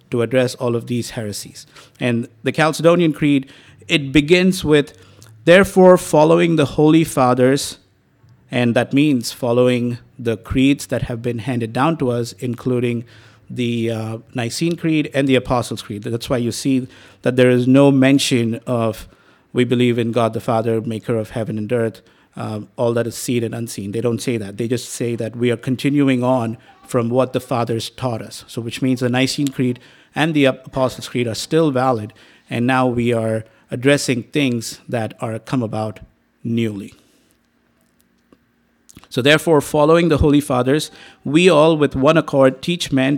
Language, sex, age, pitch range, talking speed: English, male, 50-69, 115-140 Hz, 170 wpm